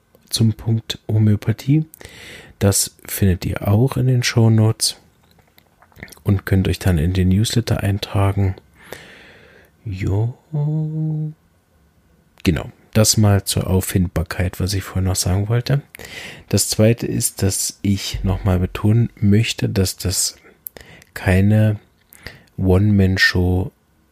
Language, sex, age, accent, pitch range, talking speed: German, male, 40-59, German, 95-110 Hz, 110 wpm